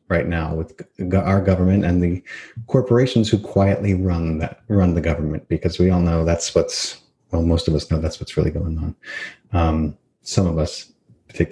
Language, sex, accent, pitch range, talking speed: English, male, American, 90-115 Hz, 190 wpm